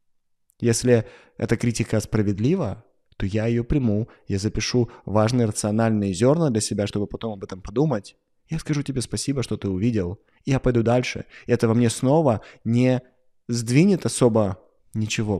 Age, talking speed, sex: 20-39, 150 wpm, male